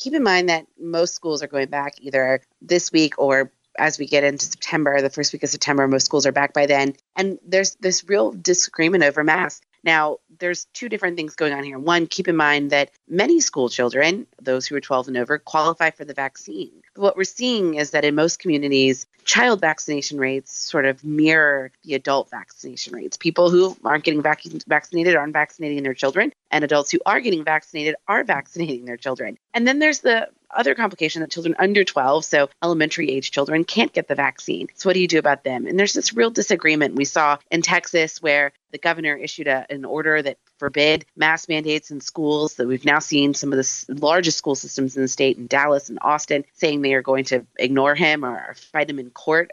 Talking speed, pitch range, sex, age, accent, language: 215 wpm, 140-170 Hz, female, 30-49, American, English